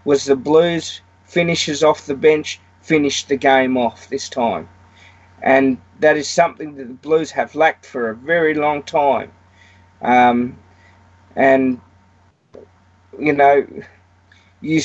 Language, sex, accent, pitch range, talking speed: English, male, Australian, 120-150 Hz, 130 wpm